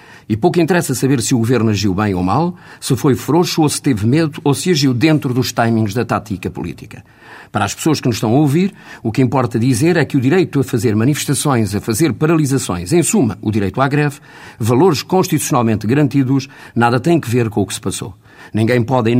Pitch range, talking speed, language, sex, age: 110-150 Hz, 220 wpm, Portuguese, male, 50-69